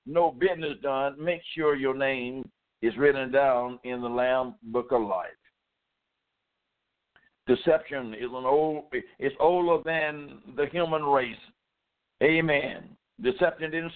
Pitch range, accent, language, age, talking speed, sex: 150-185 Hz, American, English, 60-79, 125 wpm, male